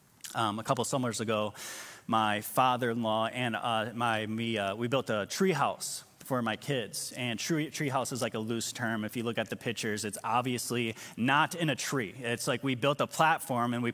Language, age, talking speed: English, 20-39, 205 wpm